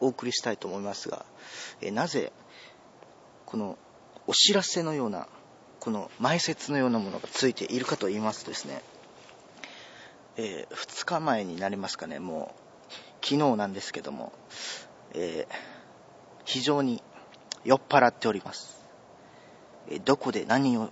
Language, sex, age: Japanese, male, 40-59